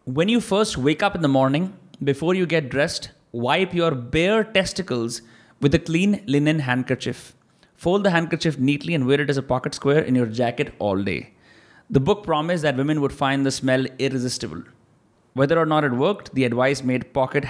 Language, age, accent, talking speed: Hindi, 20-39, native, 190 wpm